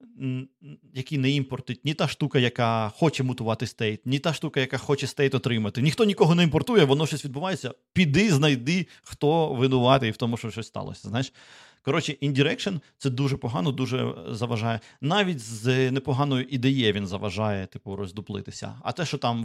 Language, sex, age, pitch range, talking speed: Ukrainian, male, 30-49, 110-140 Hz, 165 wpm